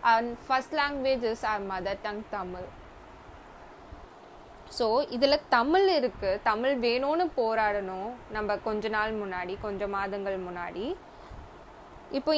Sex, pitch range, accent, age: female, 215-280 Hz, native, 20-39